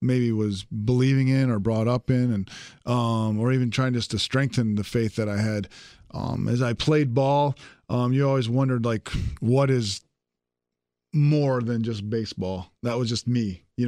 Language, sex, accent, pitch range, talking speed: English, male, American, 110-130 Hz, 180 wpm